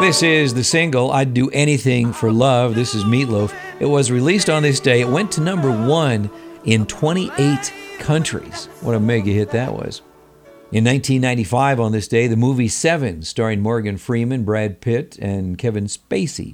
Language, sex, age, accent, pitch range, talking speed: English, male, 50-69, American, 105-135 Hz, 175 wpm